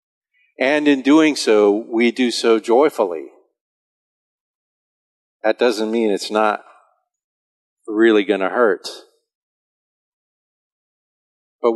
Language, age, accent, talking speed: English, 50-69, American, 90 wpm